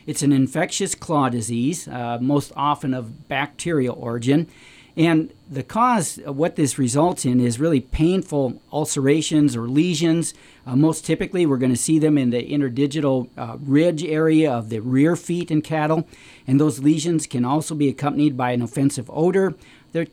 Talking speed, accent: 165 wpm, American